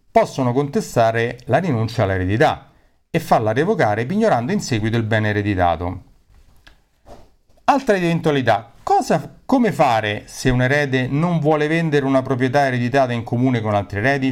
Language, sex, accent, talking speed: Italian, male, native, 140 wpm